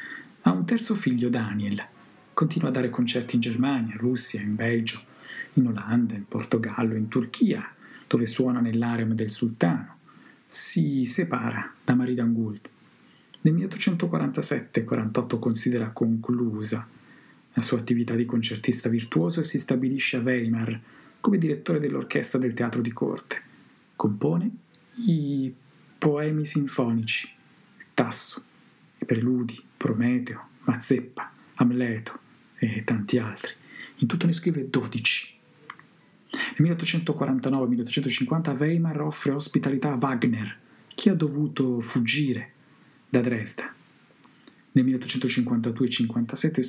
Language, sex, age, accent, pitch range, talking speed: Italian, male, 50-69, native, 115-145 Hz, 110 wpm